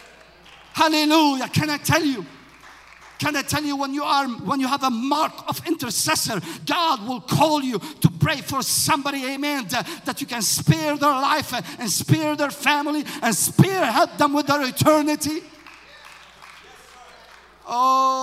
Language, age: English, 50-69